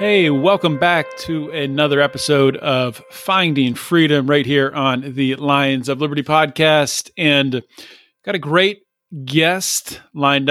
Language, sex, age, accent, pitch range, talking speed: English, male, 40-59, American, 135-185 Hz, 130 wpm